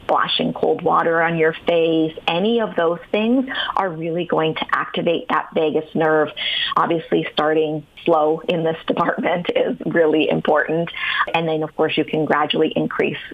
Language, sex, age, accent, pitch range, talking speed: English, female, 30-49, American, 160-195 Hz, 160 wpm